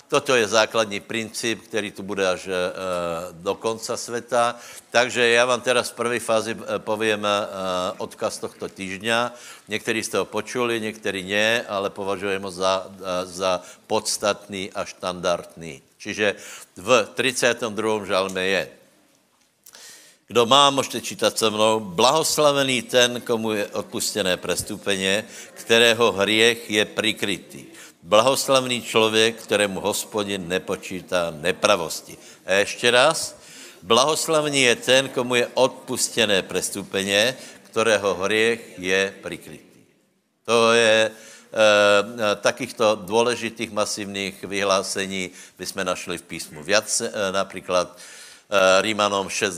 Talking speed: 115 wpm